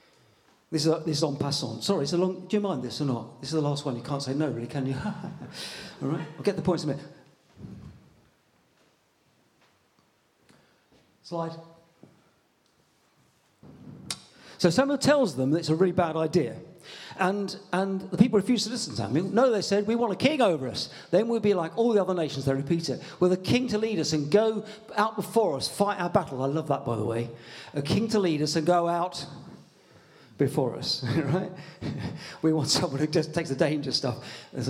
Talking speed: 205 wpm